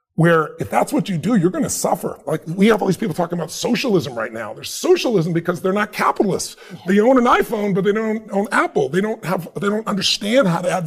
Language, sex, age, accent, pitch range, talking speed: English, female, 30-49, American, 170-220 Hz, 250 wpm